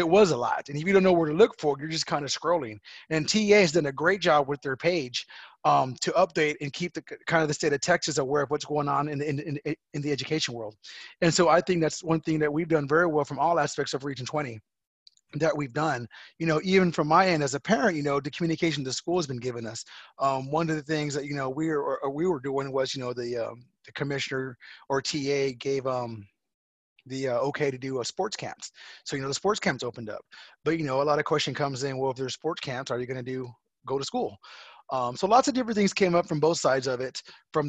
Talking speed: 265 wpm